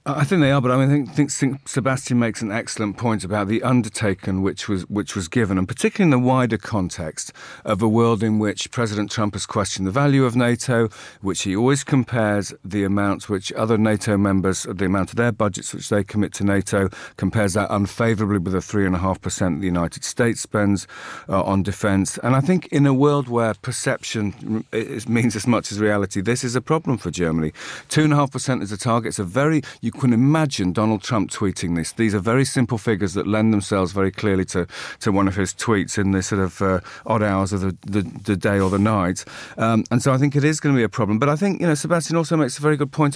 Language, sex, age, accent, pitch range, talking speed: English, male, 50-69, British, 95-125 Hz, 230 wpm